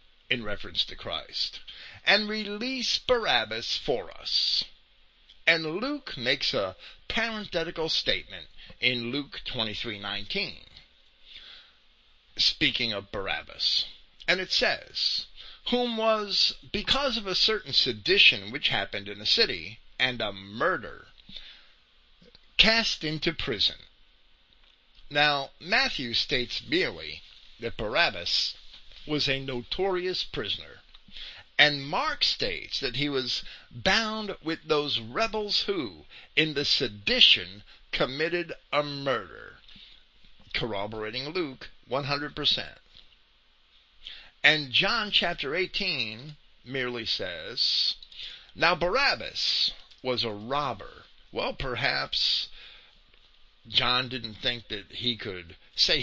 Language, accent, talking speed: English, American, 100 wpm